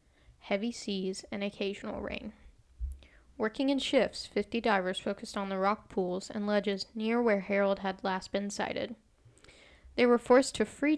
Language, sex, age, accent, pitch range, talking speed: English, female, 10-29, American, 190-225 Hz, 160 wpm